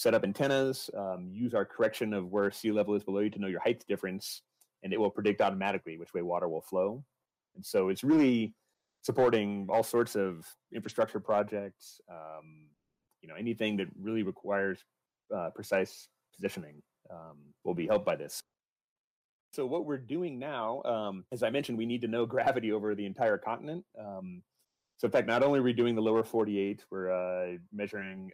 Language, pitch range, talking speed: English, 95-120 Hz, 185 wpm